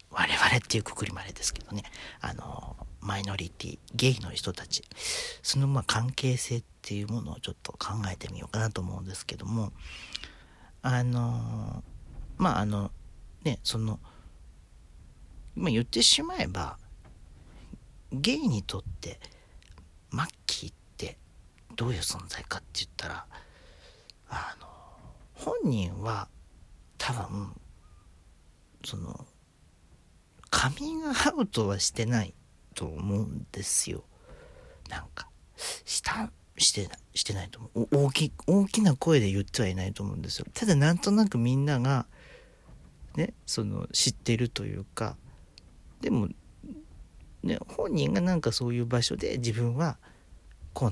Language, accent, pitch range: Japanese, native, 85-125 Hz